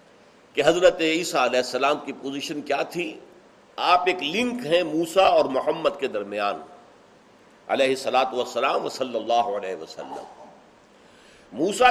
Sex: male